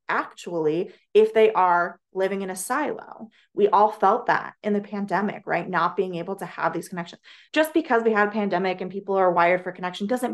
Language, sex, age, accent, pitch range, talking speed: English, female, 20-39, American, 175-210 Hz, 210 wpm